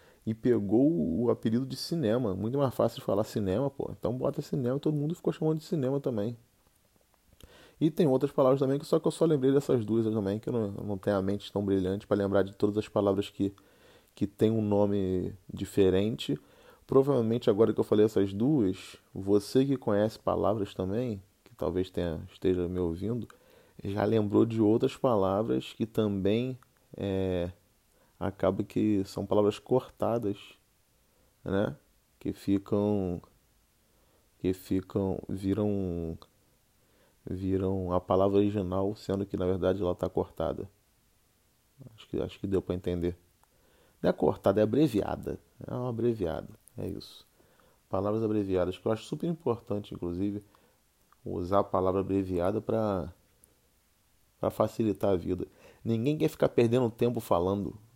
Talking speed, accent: 150 wpm, Brazilian